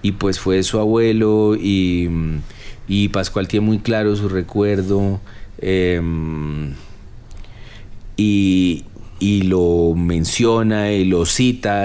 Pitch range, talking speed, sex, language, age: 95-115 Hz, 105 wpm, male, Spanish, 30-49